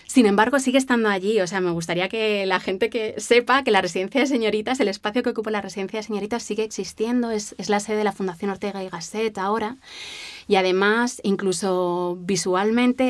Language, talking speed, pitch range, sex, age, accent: Spanish, 200 wpm, 180-215 Hz, female, 20-39, Spanish